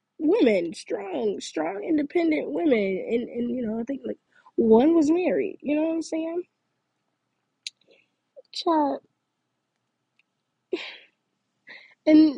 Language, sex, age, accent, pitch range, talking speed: English, female, 10-29, American, 205-260 Hz, 105 wpm